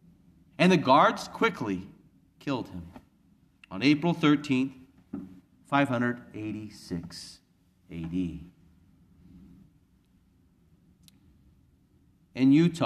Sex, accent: male, American